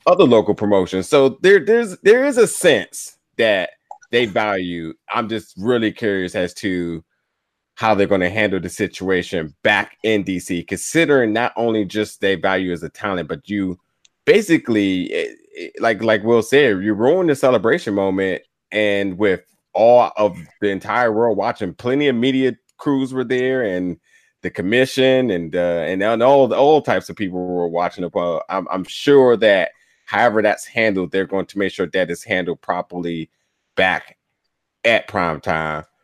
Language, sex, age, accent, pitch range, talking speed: English, male, 30-49, American, 90-115 Hz, 170 wpm